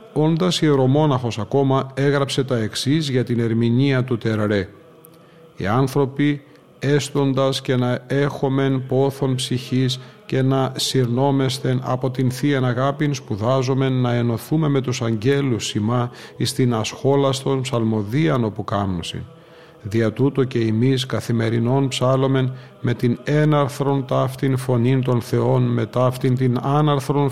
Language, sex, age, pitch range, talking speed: Greek, male, 40-59, 115-140 Hz, 120 wpm